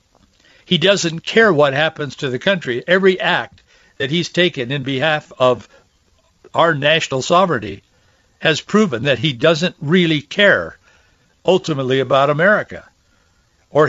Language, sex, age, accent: English, male, 60-79, American